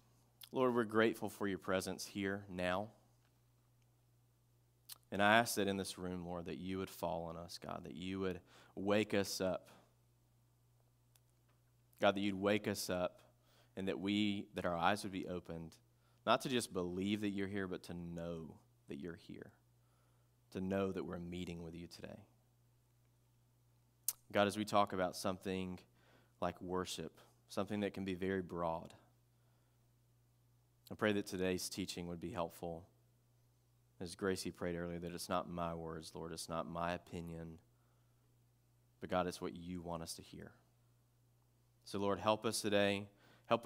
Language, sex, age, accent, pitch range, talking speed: English, male, 30-49, American, 90-120 Hz, 160 wpm